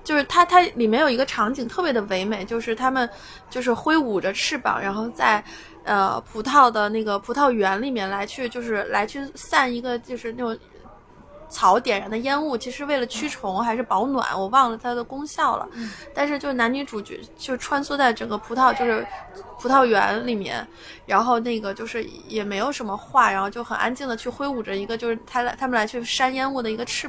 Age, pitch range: 20-39, 220-265 Hz